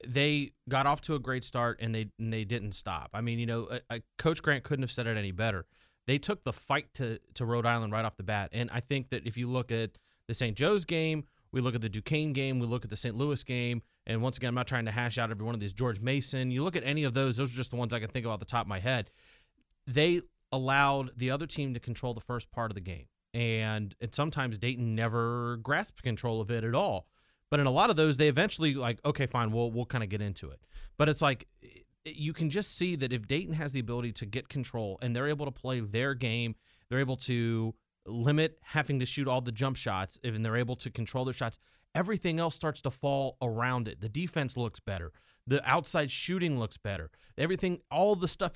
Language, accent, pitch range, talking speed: English, American, 115-145 Hz, 250 wpm